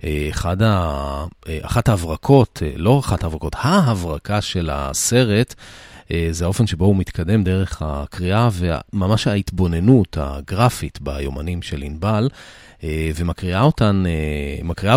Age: 40-59